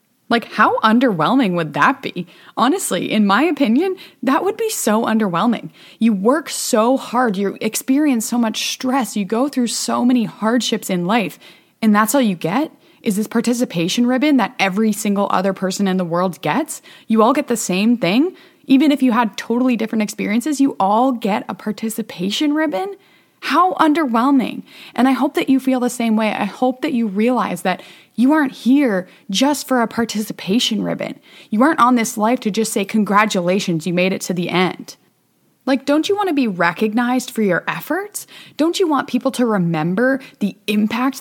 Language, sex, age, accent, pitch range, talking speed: English, female, 20-39, American, 205-275 Hz, 185 wpm